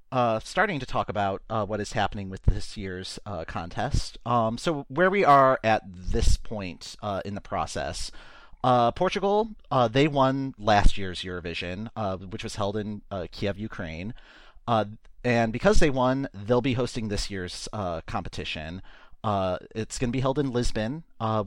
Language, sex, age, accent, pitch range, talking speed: English, male, 40-59, American, 95-125 Hz, 175 wpm